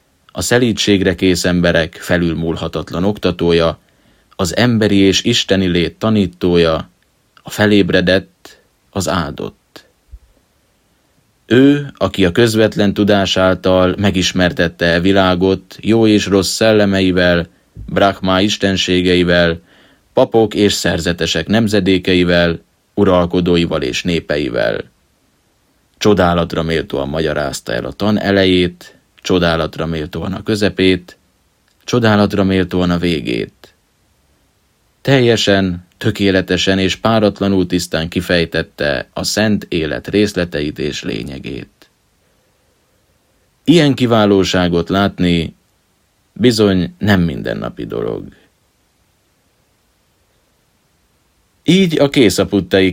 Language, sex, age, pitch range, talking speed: Hungarian, male, 30-49, 85-100 Hz, 85 wpm